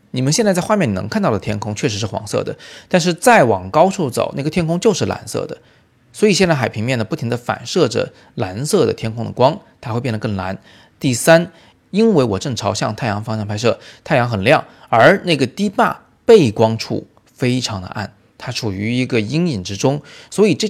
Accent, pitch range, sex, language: native, 105-150 Hz, male, Chinese